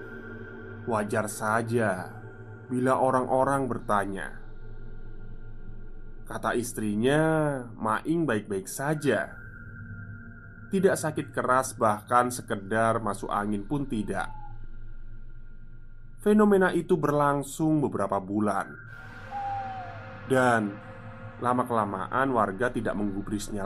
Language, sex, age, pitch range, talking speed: Indonesian, male, 20-39, 110-130 Hz, 75 wpm